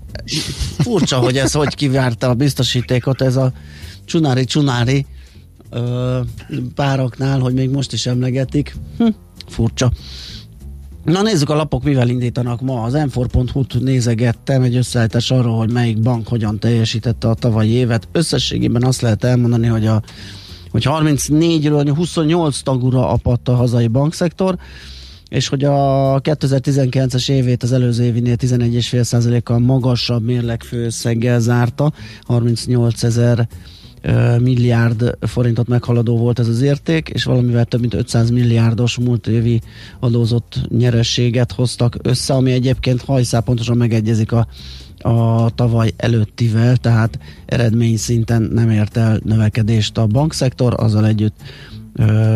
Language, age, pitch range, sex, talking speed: Hungarian, 30-49, 115-130 Hz, male, 125 wpm